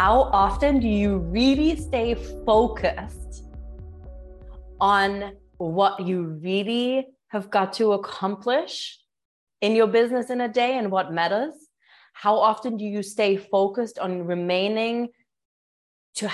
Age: 30-49